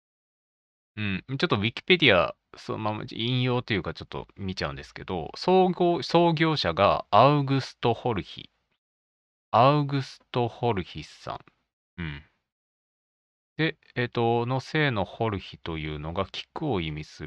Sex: male